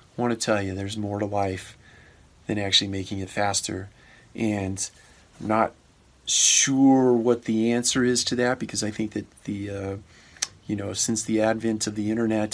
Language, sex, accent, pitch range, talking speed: English, male, American, 100-110 Hz, 175 wpm